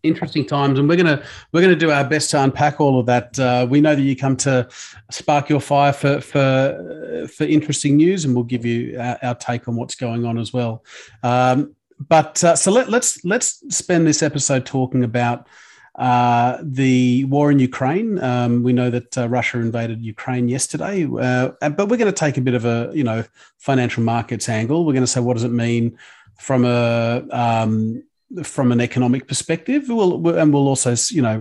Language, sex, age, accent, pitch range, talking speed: English, male, 40-59, Australian, 120-150 Hz, 200 wpm